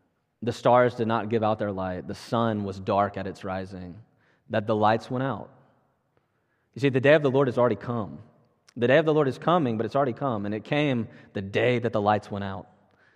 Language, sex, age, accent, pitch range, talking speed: English, male, 20-39, American, 100-125 Hz, 235 wpm